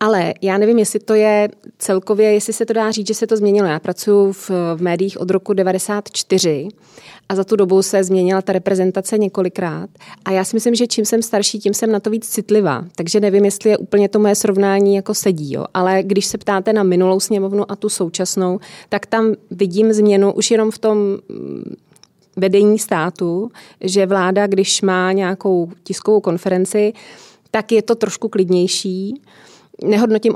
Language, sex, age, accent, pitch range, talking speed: Czech, female, 20-39, native, 185-210 Hz, 180 wpm